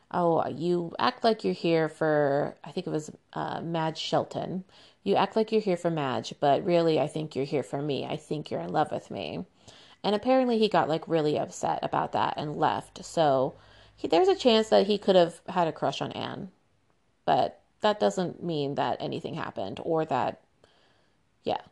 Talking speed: 195 wpm